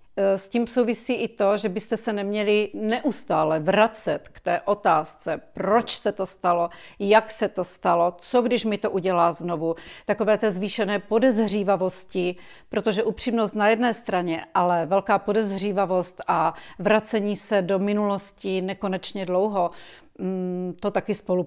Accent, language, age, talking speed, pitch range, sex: native, Czech, 40-59, 140 wpm, 185-215 Hz, female